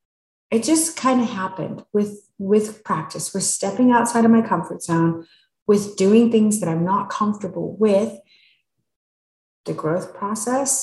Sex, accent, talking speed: female, American, 145 wpm